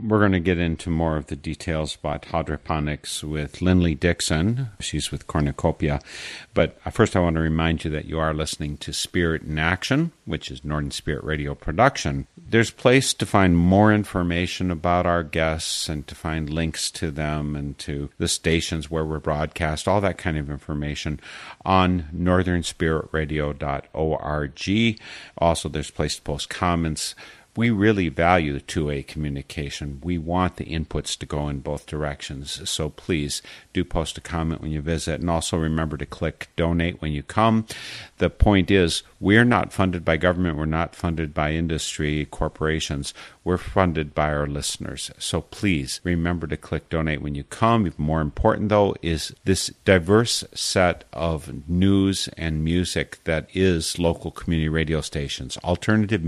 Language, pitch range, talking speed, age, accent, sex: English, 75-90 Hz, 160 wpm, 50-69, American, male